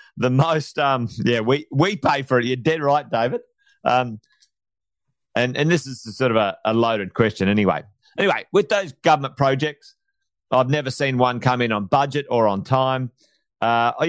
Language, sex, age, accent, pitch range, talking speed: English, male, 40-59, Australian, 120-150 Hz, 180 wpm